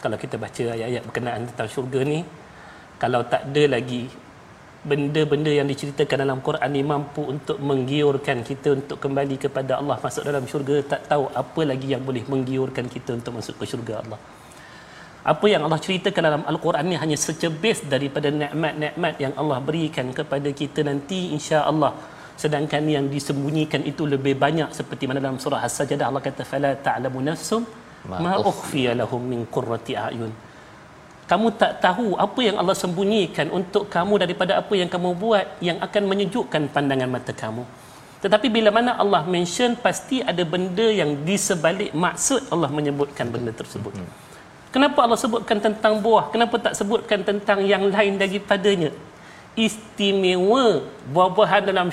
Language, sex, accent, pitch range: Malayalam, male, Indonesian, 140-195 Hz